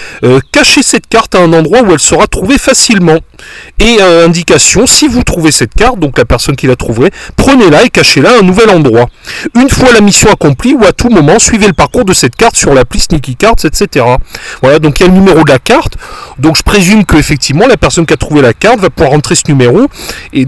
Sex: male